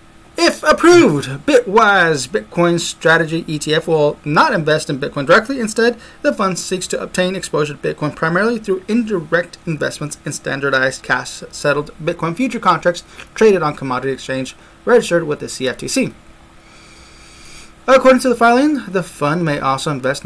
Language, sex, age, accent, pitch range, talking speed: English, male, 30-49, American, 145-200 Hz, 140 wpm